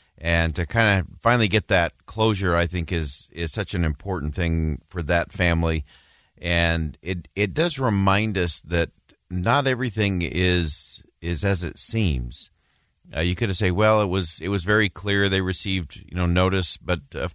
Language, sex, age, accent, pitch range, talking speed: English, male, 40-59, American, 80-100 Hz, 180 wpm